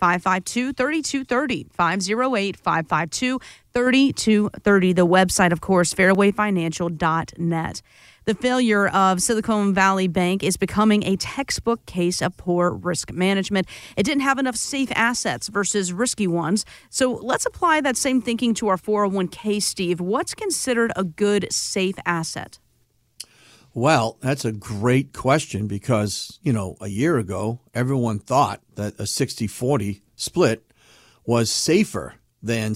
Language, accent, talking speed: English, American, 120 wpm